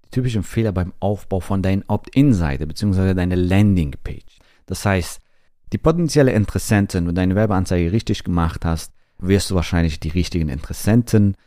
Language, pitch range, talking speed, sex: German, 90-110 Hz, 145 wpm, male